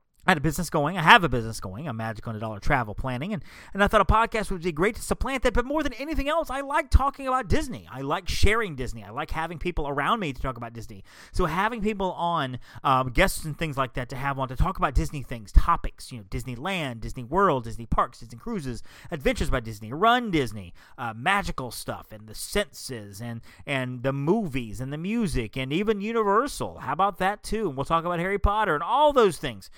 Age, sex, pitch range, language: 30-49, male, 120-180 Hz, English